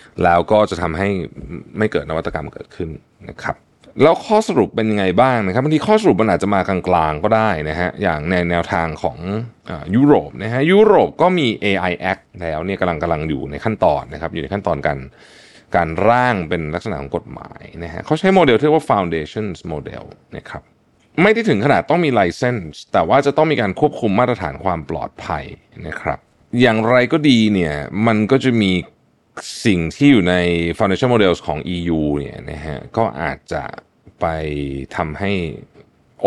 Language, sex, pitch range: Thai, male, 85-130 Hz